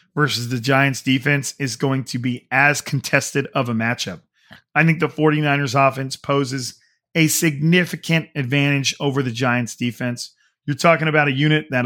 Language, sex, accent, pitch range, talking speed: English, male, American, 130-155 Hz, 160 wpm